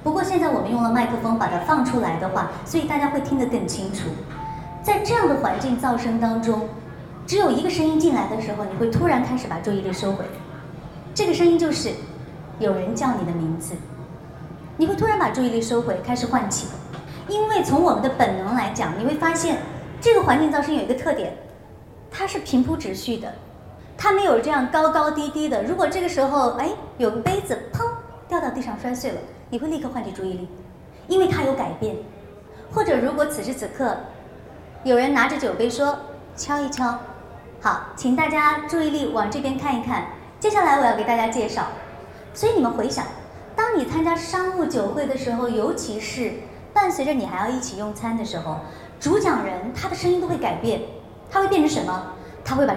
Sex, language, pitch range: male, Chinese, 230-325 Hz